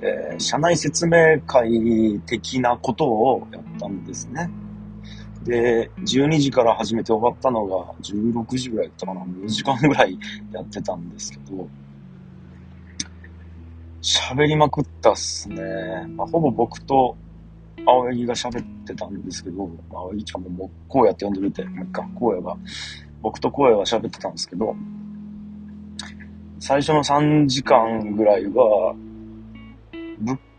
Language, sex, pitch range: Japanese, male, 85-130 Hz